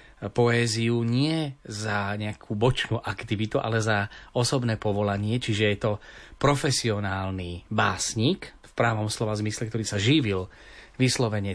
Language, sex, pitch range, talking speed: Slovak, male, 105-125 Hz, 120 wpm